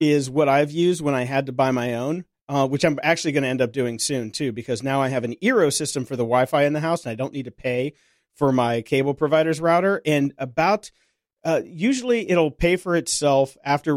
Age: 40-59